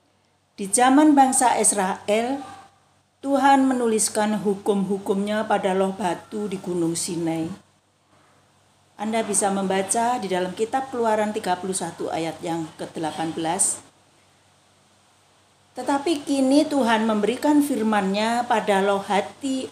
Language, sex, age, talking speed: Indonesian, female, 40-59, 95 wpm